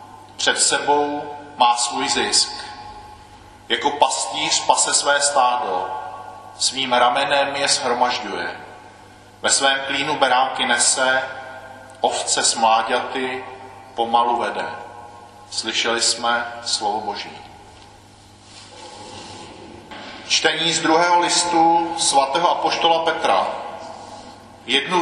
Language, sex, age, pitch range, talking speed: Czech, male, 40-59, 120-155 Hz, 85 wpm